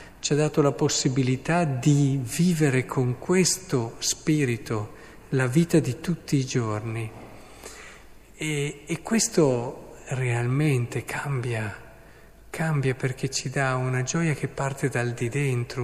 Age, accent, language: 50-69, native, Italian